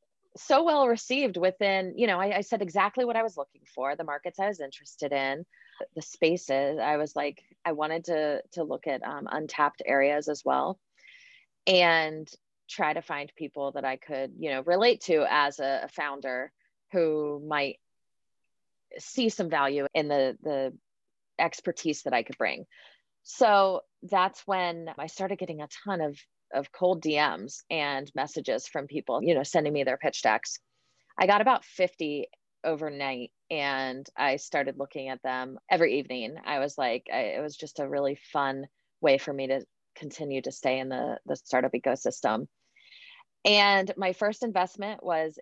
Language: English